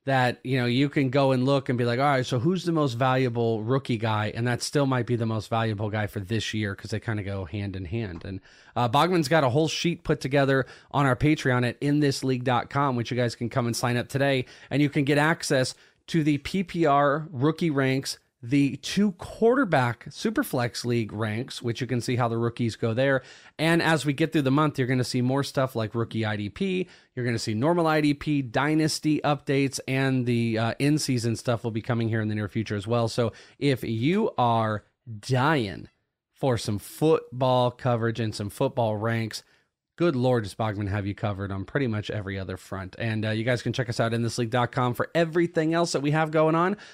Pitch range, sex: 115-145 Hz, male